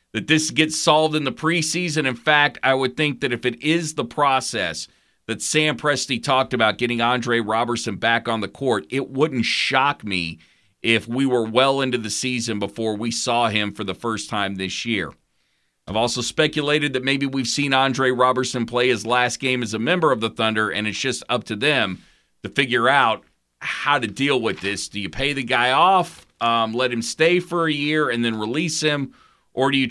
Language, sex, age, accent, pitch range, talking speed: English, male, 40-59, American, 115-150 Hz, 210 wpm